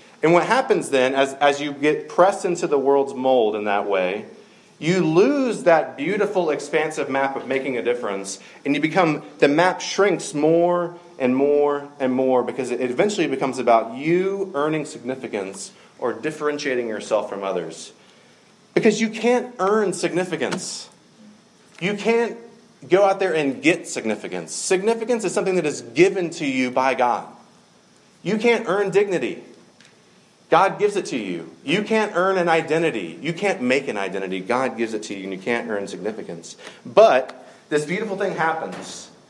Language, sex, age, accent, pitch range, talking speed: English, male, 30-49, American, 135-190 Hz, 165 wpm